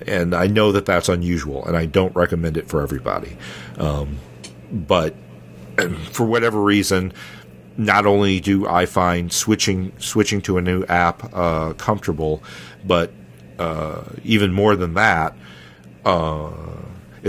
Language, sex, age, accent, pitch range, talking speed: English, male, 50-69, American, 80-95 Hz, 130 wpm